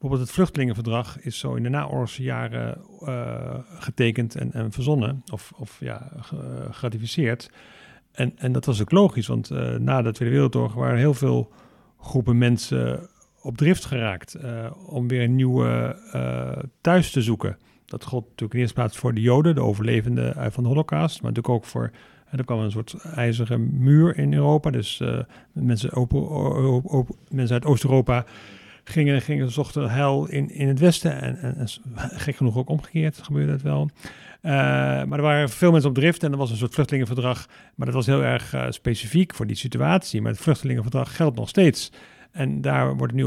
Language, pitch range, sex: Dutch, 115-140 Hz, male